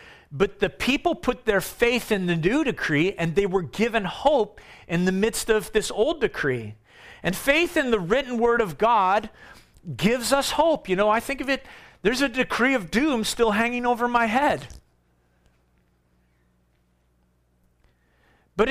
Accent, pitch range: American, 150-240 Hz